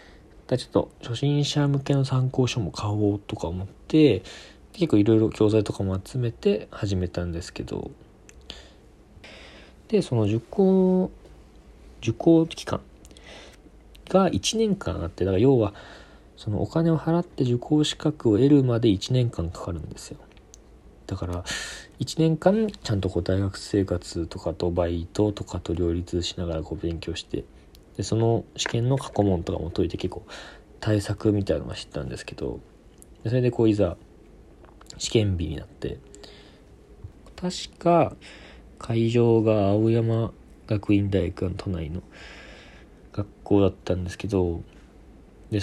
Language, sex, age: Japanese, male, 40-59